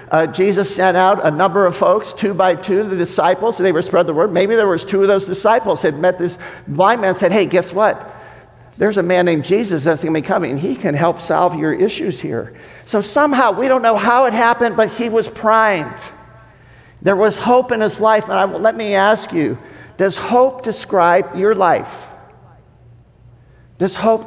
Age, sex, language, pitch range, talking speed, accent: 50-69, male, English, 165-215 Hz, 200 wpm, American